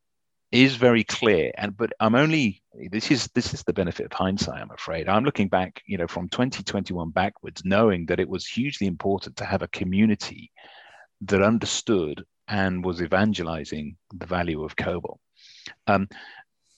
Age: 40-59